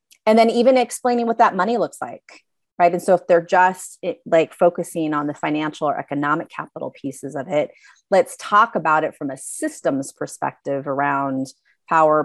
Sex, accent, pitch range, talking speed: female, American, 150-185 Hz, 175 wpm